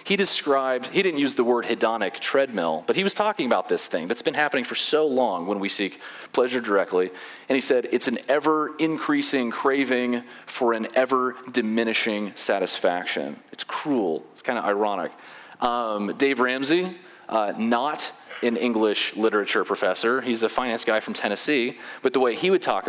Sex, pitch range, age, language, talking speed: male, 105-135 Hz, 30-49, English, 170 wpm